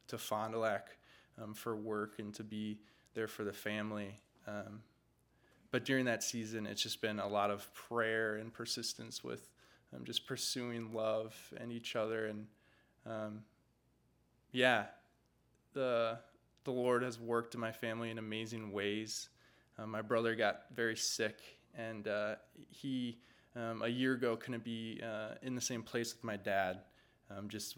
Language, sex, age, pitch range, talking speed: English, male, 20-39, 105-115 Hz, 160 wpm